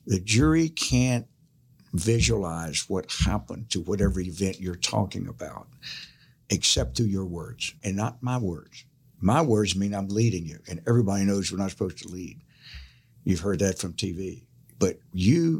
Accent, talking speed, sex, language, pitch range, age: American, 160 wpm, male, English, 95-125 Hz, 60-79